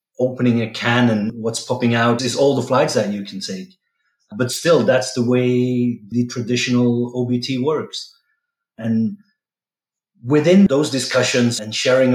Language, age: English, 30-49